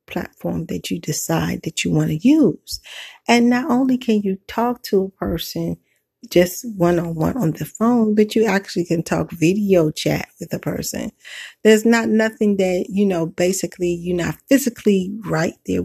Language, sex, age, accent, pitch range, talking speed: English, female, 40-59, American, 175-230 Hz, 175 wpm